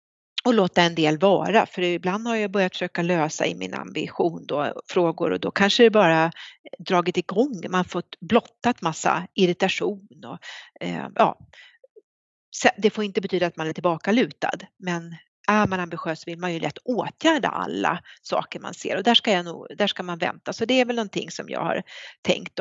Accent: native